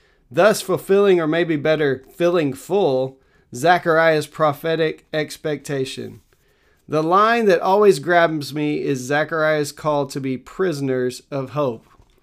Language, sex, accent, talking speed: English, male, American, 120 wpm